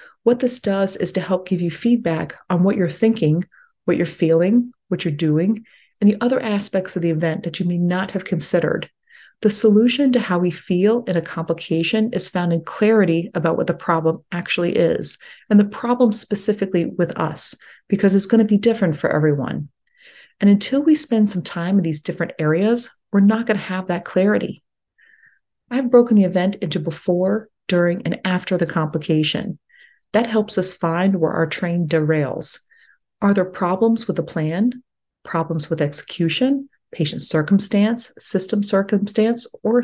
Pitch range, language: 175-220 Hz, English